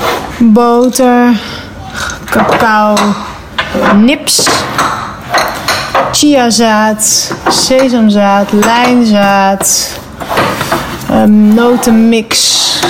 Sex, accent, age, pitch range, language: female, Dutch, 30-49, 210-255 Hz, Dutch